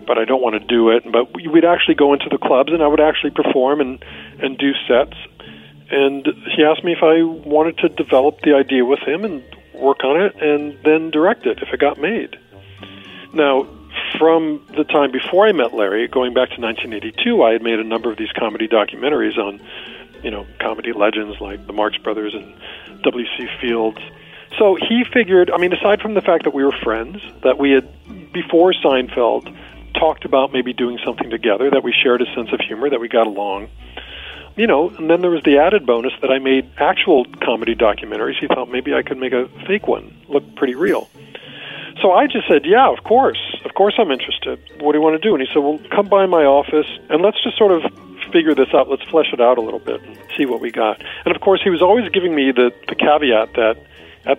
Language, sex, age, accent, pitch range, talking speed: English, male, 50-69, American, 120-165 Hz, 220 wpm